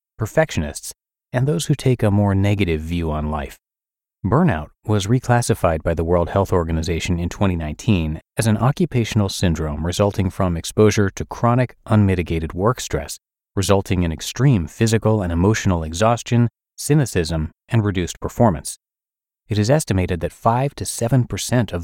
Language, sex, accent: English, male, American